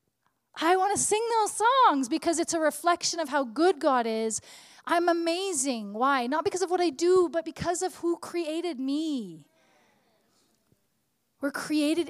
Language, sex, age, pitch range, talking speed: English, female, 30-49, 235-320 Hz, 160 wpm